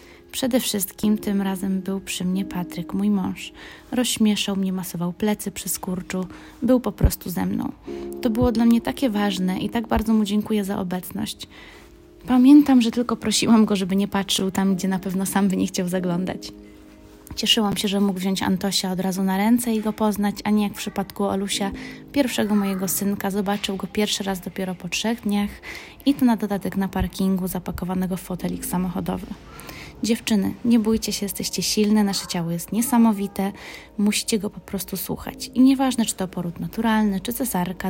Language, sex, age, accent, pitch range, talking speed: Polish, female, 20-39, native, 190-220 Hz, 180 wpm